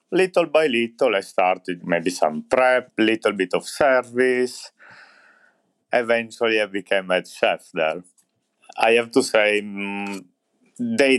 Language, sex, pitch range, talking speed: English, male, 95-130 Hz, 125 wpm